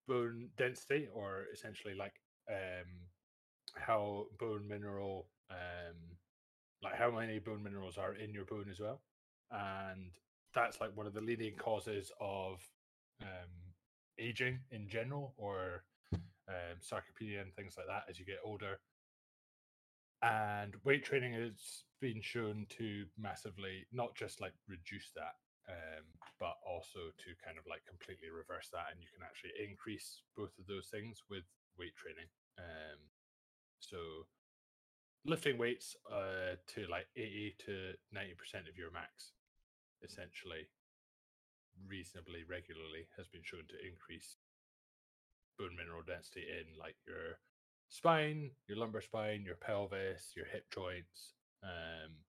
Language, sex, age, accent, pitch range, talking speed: English, male, 20-39, British, 90-110 Hz, 135 wpm